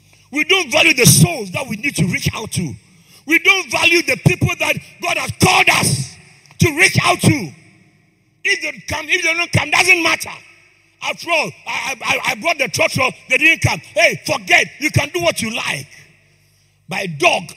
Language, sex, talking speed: English, male, 200 wpm